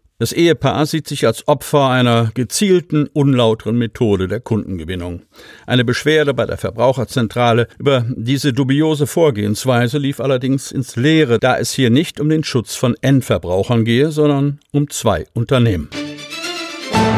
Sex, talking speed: male, 135 wpm